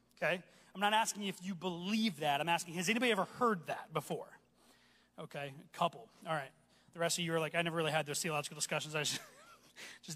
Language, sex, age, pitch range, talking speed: English, male, 30-49, 160-215 Hz, 215 wpm